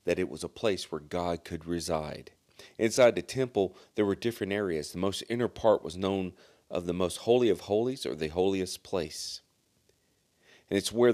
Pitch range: 85-105 Hz